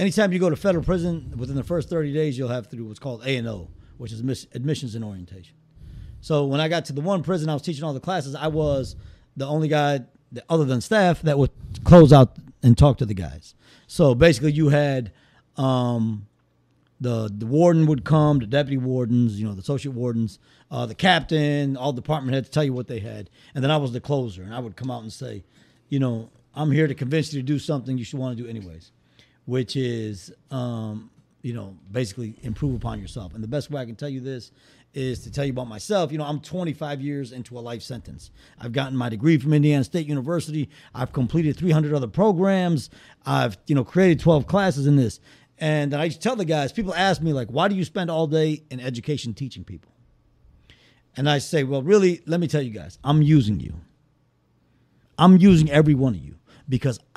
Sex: male